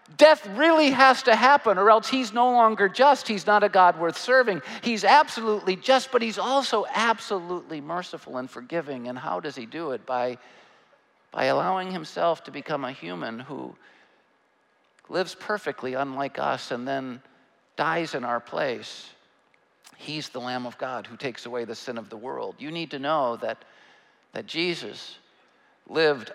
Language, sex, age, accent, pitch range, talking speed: English, male, 50-69, American, 140-220 Hz, 165 wpm